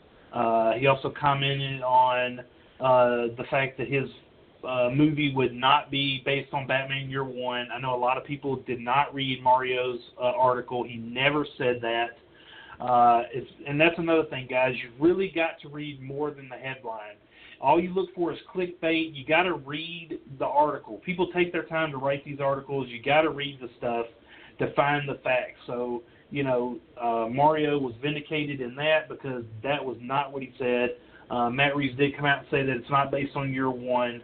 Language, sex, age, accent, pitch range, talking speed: English, male, 40-59, American, 125-150 Hz, 200 wpm